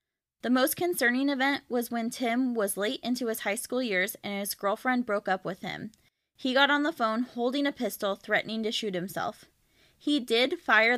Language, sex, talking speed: English, female, 195 wpm